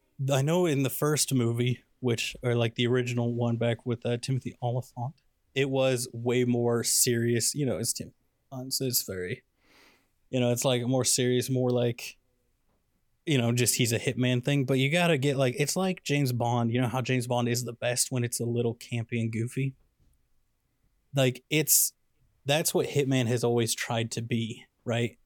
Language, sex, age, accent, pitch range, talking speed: English, male, 20-39, American, 120-140 Hz, 185 wpm